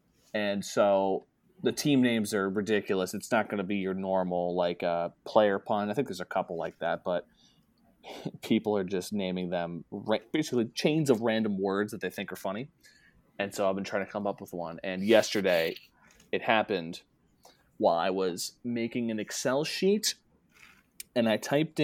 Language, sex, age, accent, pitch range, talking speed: English, male, 20-39, American, 100-130 Hz, 180 wpm